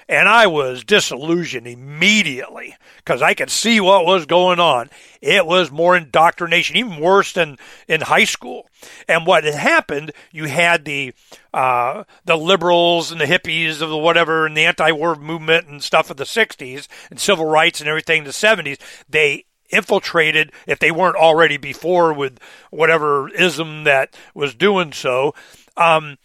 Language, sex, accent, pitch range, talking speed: English, male, American, 160-205 Hz, 160 wpm